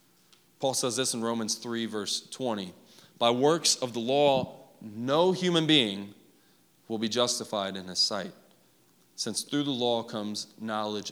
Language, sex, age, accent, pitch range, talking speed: English, male, 30-49, American, 120-200 Hz, 150 wpm